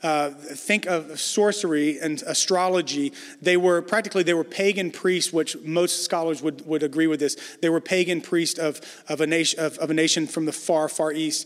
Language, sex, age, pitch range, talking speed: English, male, 30-49, 155-185 Hz, 180 wpm